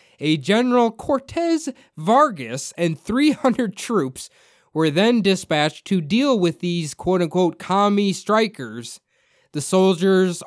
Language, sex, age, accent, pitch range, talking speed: English, male, 20-39, American, 150-200 Hz, 110 wpm